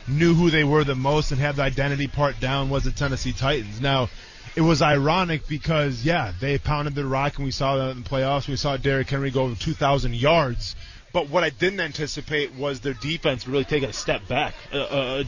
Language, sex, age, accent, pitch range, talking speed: English, male, 20-39, American, 140-170 Hz, 225 wpm